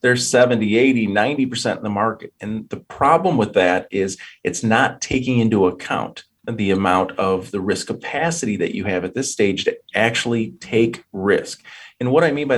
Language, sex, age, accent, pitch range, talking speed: English, male, 40-59, American, 105-130 Hz, 180 wpm